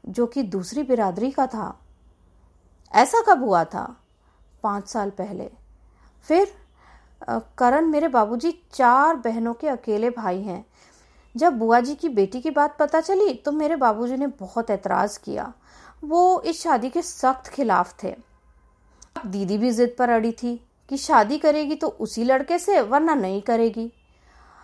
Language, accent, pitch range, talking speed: Hindi, native, 215-285 Hz, 150 wpm